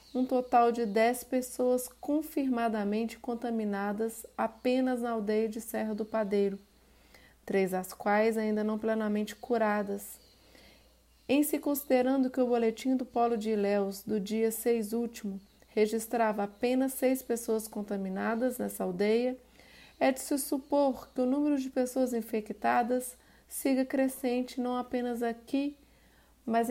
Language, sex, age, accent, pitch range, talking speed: Portuguese, female, 30-49, Brazilian, 210-250 Hz, 135 wpm